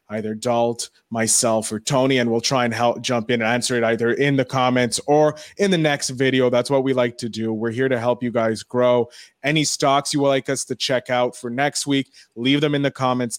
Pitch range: 110-135 Hz